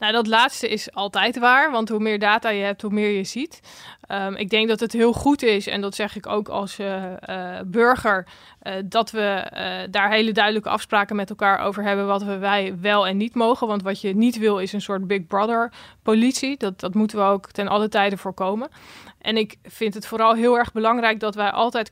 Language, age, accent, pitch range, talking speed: Dutch, 20-39, Dutch, 205-235 Hz, 225 wpm